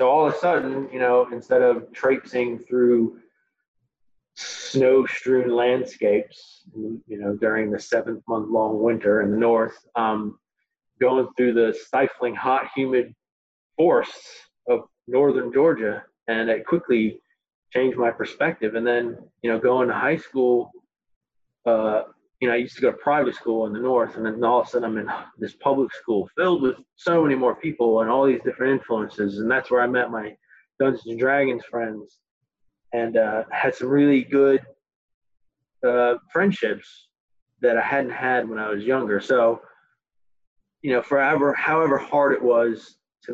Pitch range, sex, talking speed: 110-130 Hz, male, 165 wpm